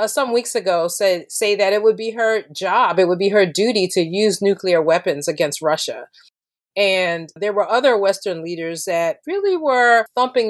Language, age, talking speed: English, 30-49, 185 wpm